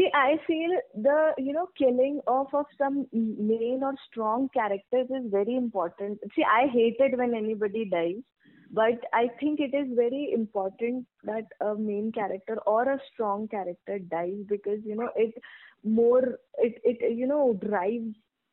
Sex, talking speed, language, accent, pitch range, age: female, 160 wpm, English, Indian, 195-240 Hz, 20-39